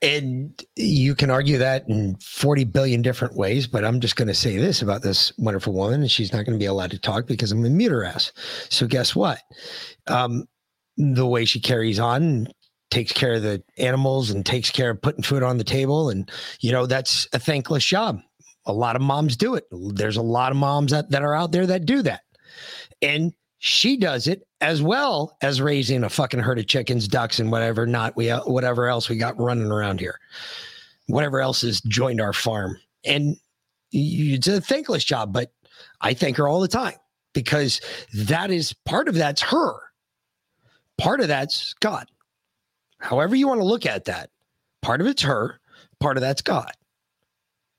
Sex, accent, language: male, American, English